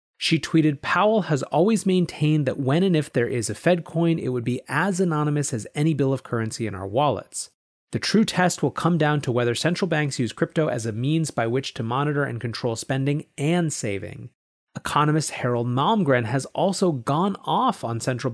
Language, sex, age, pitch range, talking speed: English, male, 30-49, 120-175 Hz, 200 wpm